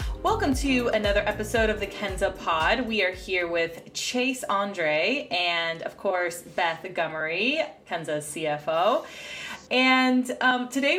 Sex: female